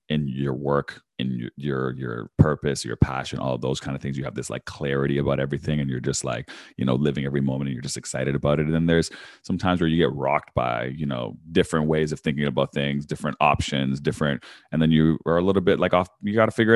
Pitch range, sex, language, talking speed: 70-80 Hz, male, English, 250 wpm